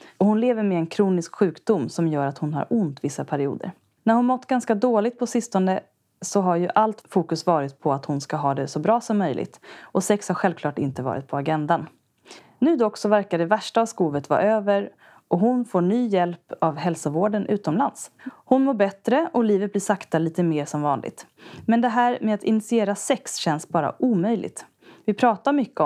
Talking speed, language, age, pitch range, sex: 205 wpm, Swedish, 30-49, 165-225 Hz, female